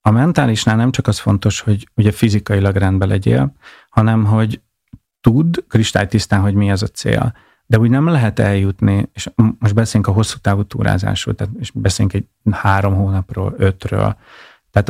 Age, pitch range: 30-49, 100-115 Hz